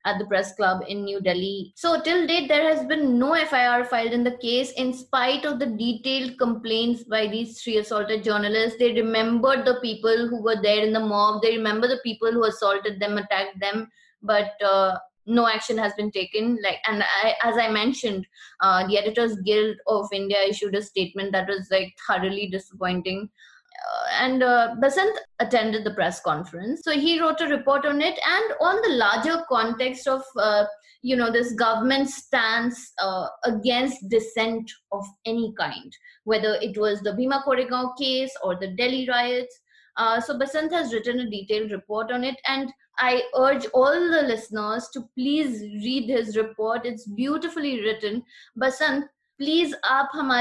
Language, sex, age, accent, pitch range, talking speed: English, female, 20-39, Indian, 210-265 Hz, 175 wpm